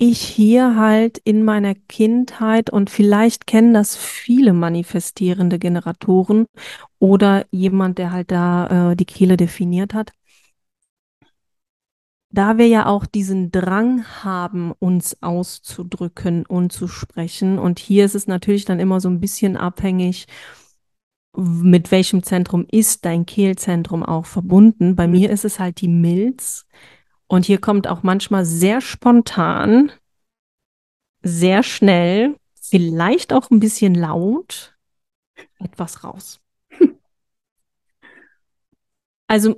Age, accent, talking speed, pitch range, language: 30-49, German, 120 wpm, 180-220 Hz, German